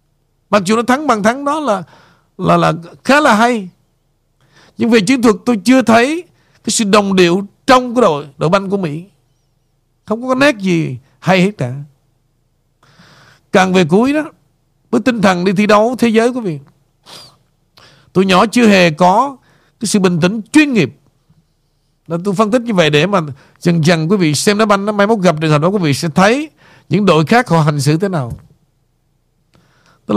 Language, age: Vietnamese, 50-69